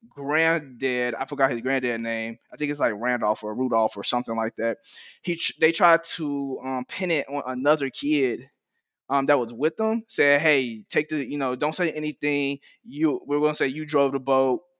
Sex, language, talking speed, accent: male, English, 200 wpm, American